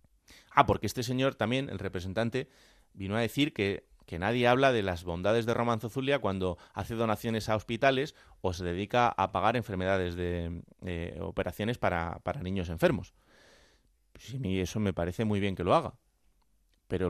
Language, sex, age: Spanish, male, 30-49